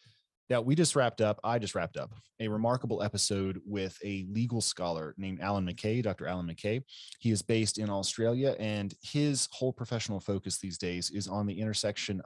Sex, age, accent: male, 30-49, American